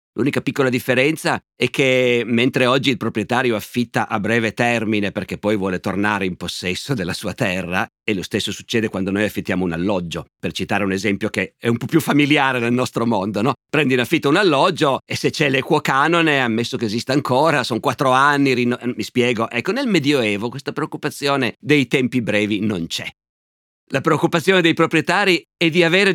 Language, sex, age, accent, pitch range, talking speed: Italian, male, 50-69, native, 115-150 Hz, 185 wpm